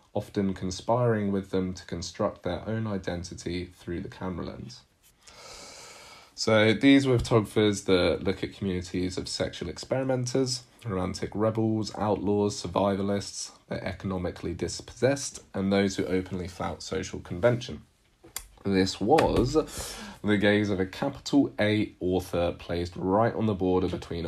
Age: 30-49